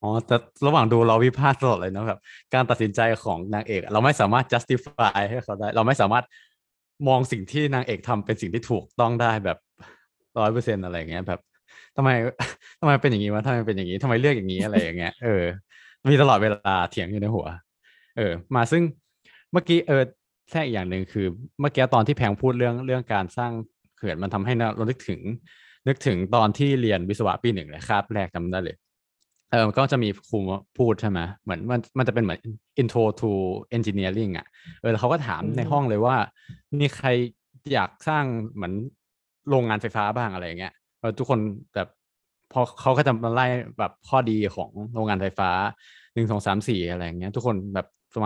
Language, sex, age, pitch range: Thai, male, 20-39, 100-125 Hz